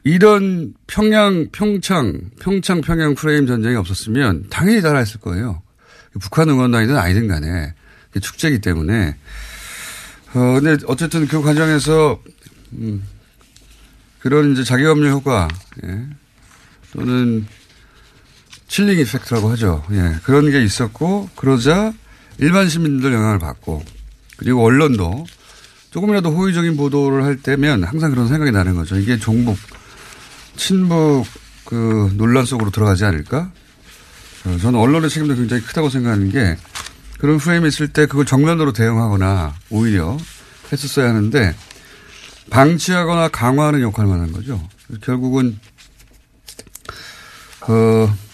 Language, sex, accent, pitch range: Korean, male, native, 100-150 Hz